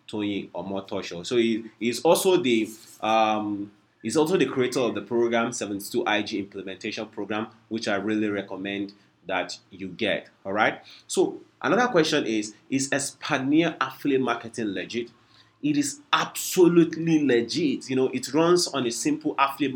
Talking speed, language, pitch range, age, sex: 150 wpm, English, 105-140 Hz, 30-49, male